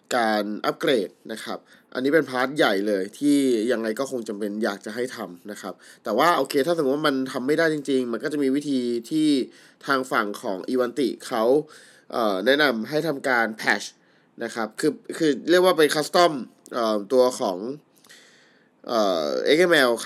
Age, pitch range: 20-39, 110-150 Hz